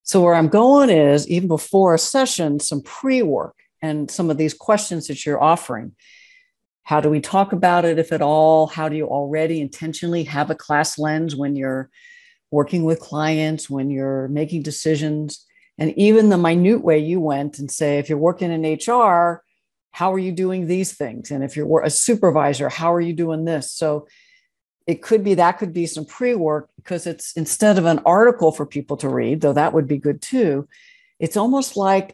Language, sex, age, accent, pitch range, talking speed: English, female, 60-79, American, 150-195 Hz, 195 wpm